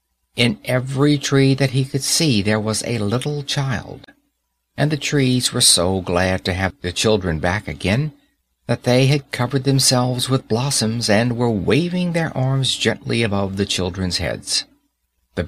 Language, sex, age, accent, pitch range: Korean, male, 50-69, American, 95-140 Hz